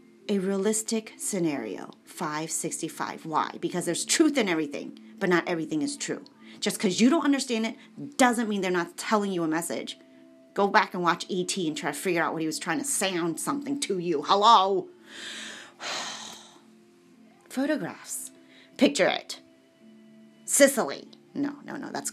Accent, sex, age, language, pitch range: American, female, 30-49, Japanese, 170-265 Hz